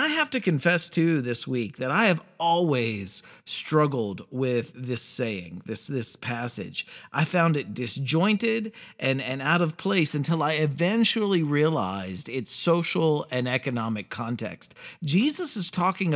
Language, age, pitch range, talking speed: English, 50-69, 125-170 Hz, 145 wpm